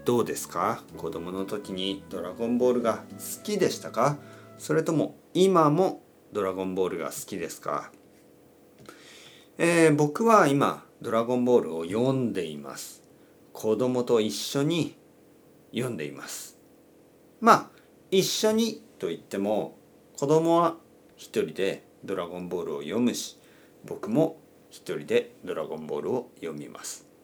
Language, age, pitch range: Japanese, 40-59, 110-165 Hz